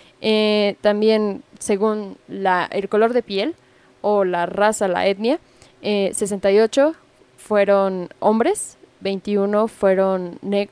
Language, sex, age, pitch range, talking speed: Spanish, female, 10-29, 195-235 Hz, 110 wpm